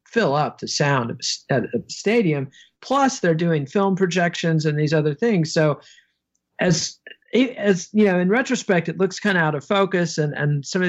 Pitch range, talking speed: 140-185 Hz, 185 wpm